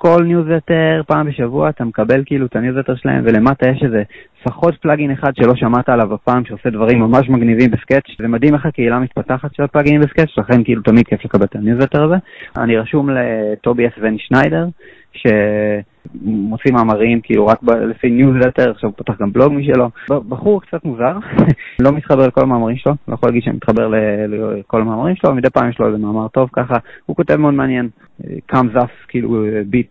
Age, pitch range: 20-39, 110-135 Hz